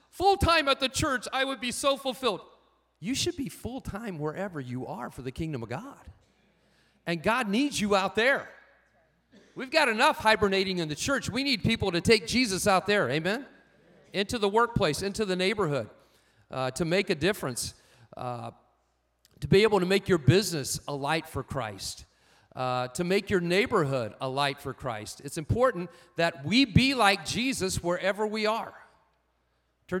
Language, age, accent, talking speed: English, 40-59, American, 170 wpm